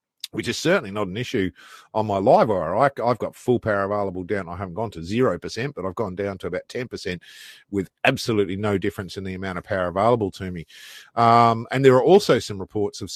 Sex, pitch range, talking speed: male, 95-125 Hz, 215 wpm